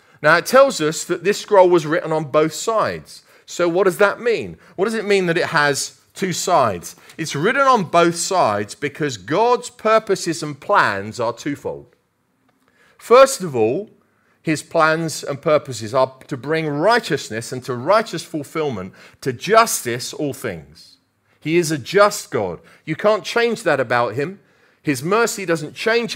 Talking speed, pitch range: 165 wpm, 140-195 Hz